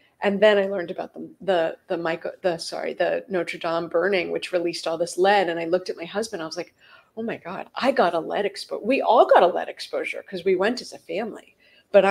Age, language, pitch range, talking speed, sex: 30-49, English, 170-200 Hz, 255 wpm, female